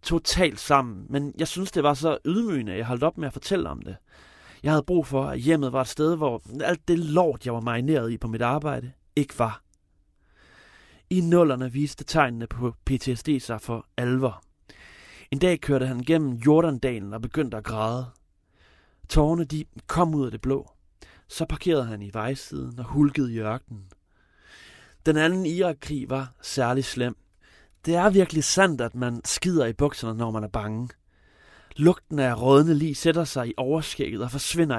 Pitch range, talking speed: 115-155 Hz, 180 wpm